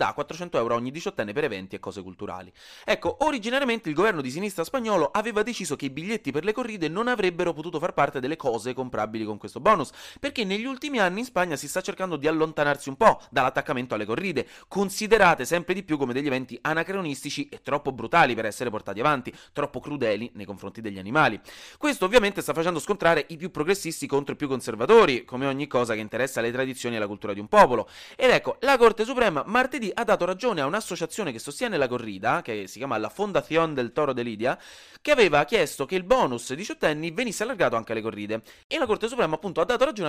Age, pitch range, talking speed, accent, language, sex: 30-49, 120-200 Hz, 215 wpm, native, Italian, male